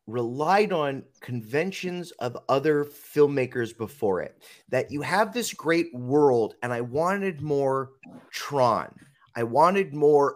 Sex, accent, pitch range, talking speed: male, American, 130-200 Hz, 125 wpm